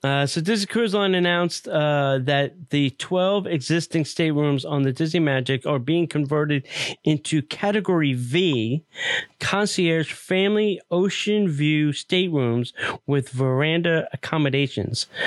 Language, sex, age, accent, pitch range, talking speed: English, male, 30-49, American, 130-170 Hz, 120 wpm